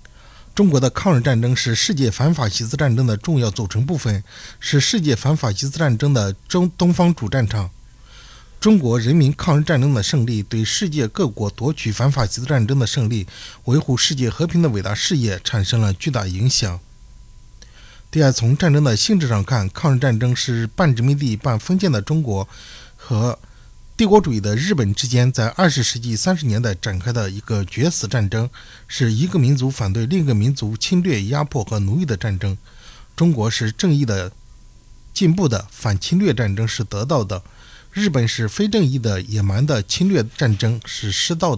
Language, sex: Chinese, male